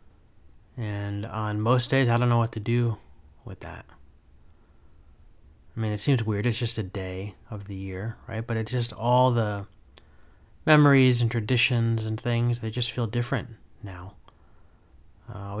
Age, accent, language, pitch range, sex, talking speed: 20-39, American, English, 95-115 Hz, male, 160 wpm